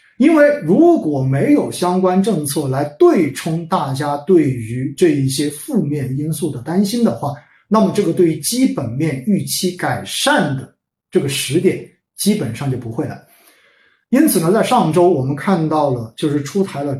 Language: Chinese